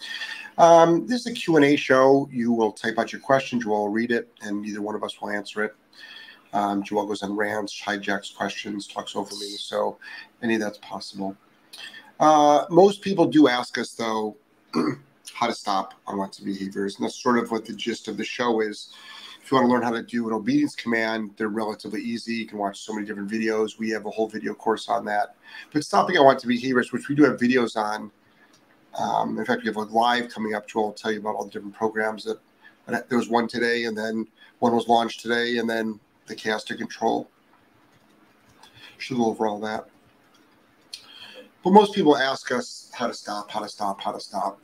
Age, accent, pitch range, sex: 30-49, American, 105-125 Hz, male